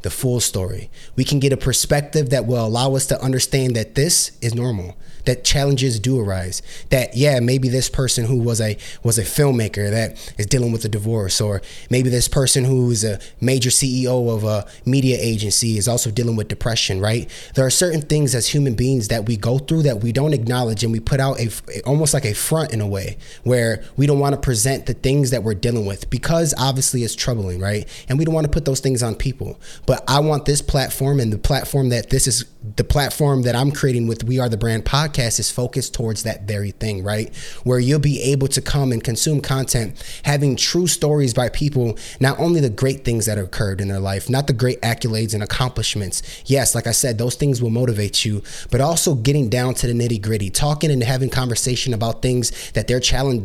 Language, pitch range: English, 115-140 Hz